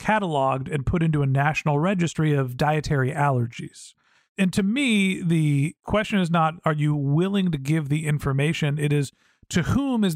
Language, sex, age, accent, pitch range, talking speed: English, male, 40-59, American, 140-185 Hz, 170 wpm